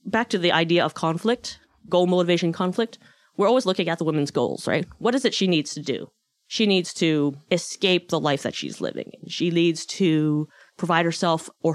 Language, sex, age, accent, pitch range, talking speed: English, female, 30-49, American, 155-195 Hz, 195 wpm